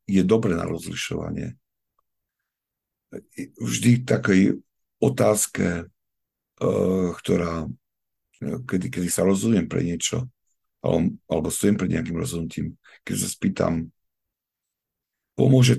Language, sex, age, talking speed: Slovak, male, 50-69, 85 wpm